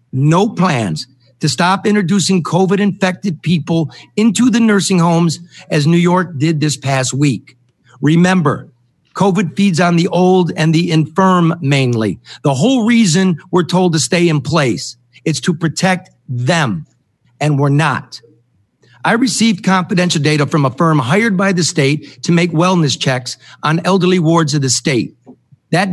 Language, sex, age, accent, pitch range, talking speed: English, male, 50-69, American, 135-180 Hz, 155 wpm